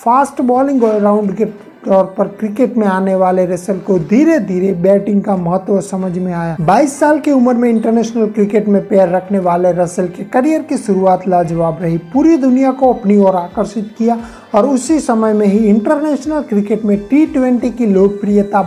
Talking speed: 185 wpm